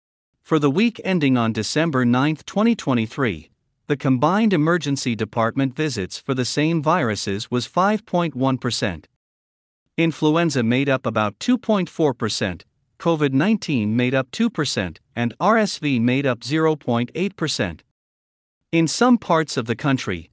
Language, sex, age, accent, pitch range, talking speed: English, male, 50-69, American, 115-165 Hz, 120 wpm